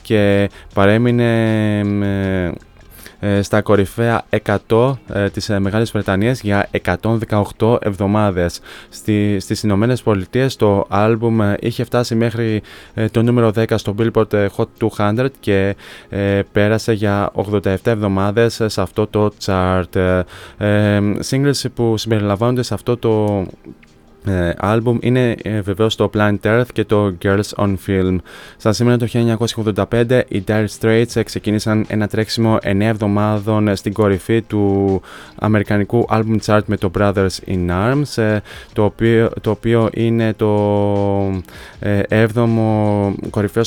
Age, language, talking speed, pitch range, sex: 20-39, Greek, 135 wpm, 100-115 Hz, male